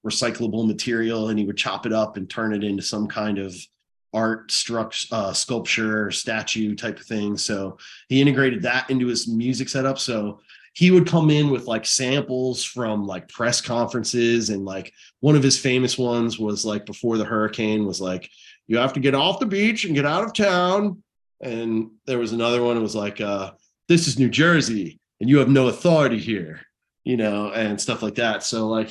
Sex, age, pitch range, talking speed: male, 30-49, 105-130 Hz, 200 wpm